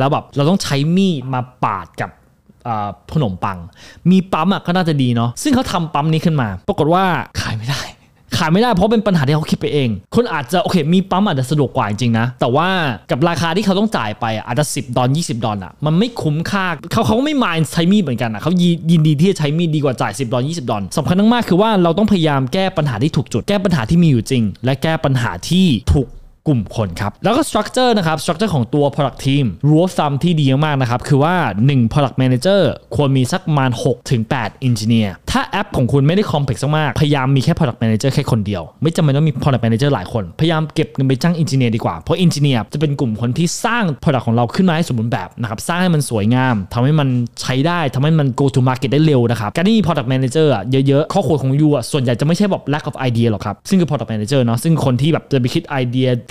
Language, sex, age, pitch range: Thai, male, 20-39, 125-170 Hz